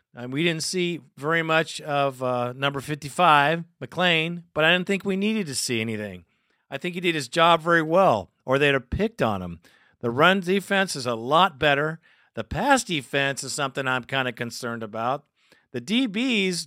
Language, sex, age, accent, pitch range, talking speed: English, male, 50-69, American, 125-180 Hz, 190 wpm